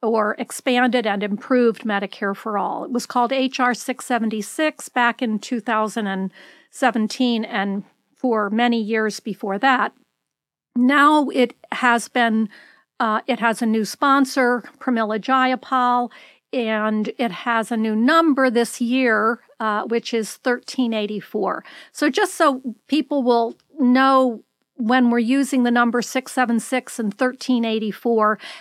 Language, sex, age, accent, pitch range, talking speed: English, female, 50-69, American, 220-260 Hz, 125 wpm